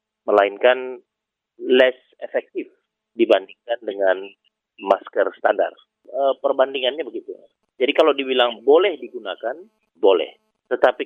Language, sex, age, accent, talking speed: Indonesian, male, 40-59, native, 85 wpm